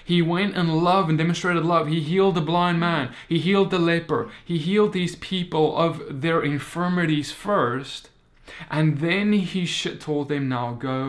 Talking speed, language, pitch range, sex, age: 170 wpm, English, 130-170 Hz, male, 20-39